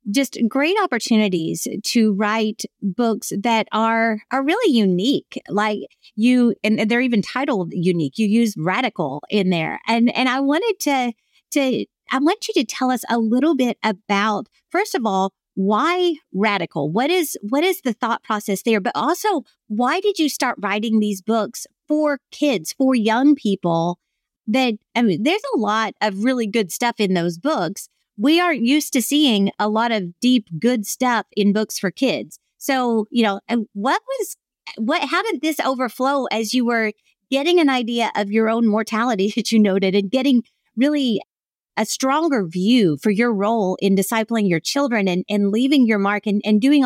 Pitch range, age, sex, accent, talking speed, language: 210-265 Hz, 40-59, female, American, 175 wpm, English